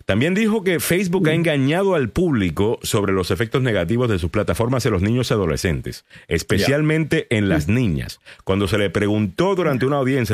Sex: male